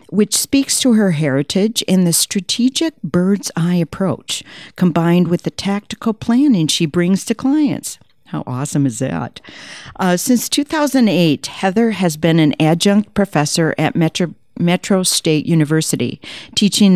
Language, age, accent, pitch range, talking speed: English, 50-69, American, 155-210 Hz, 140 wpm